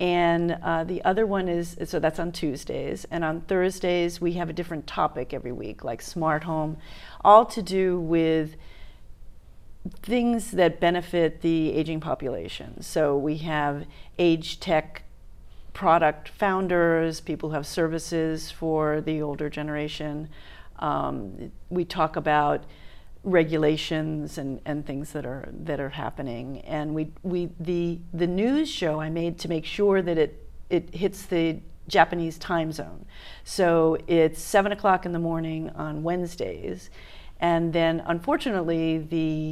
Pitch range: 150-175 Hz